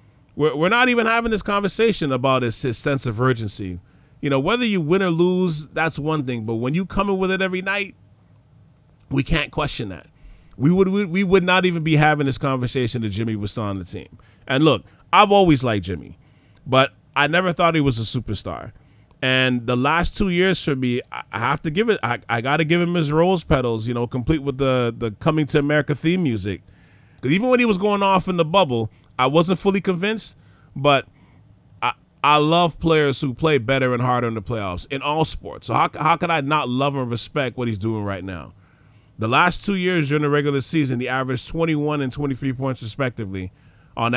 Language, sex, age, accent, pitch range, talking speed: English, male, 30-49, American, 120-170 Hz, 215 wpm